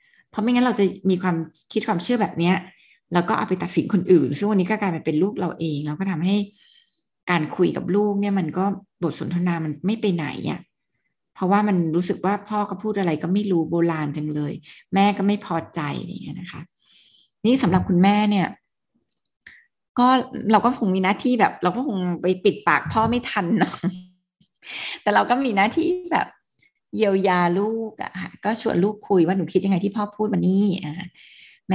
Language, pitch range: Thai, 175-215 Hz